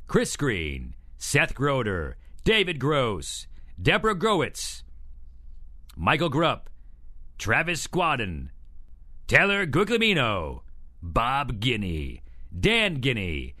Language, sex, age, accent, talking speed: English, male, 40-59, American, 80 wpm